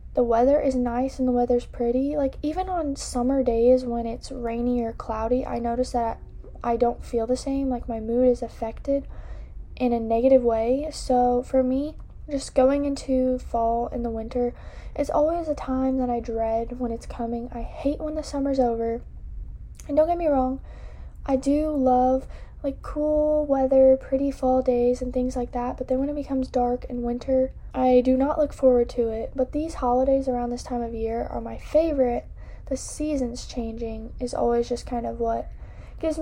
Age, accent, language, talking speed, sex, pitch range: 10-29, American, English, 190 wpm, female, 240-275 Hz